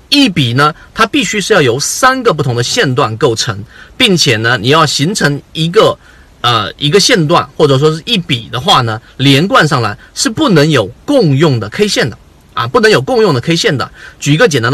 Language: Chinese